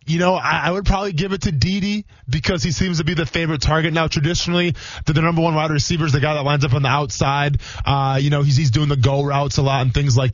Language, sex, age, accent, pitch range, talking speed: English, male, 20-39, American, 125-160 Hz, 280 wpm